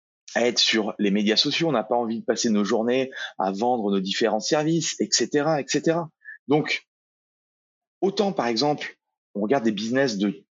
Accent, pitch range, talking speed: French, 110-160 Hz, 170 wpm